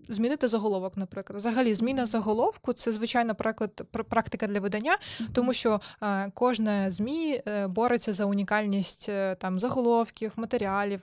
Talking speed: 115 wpm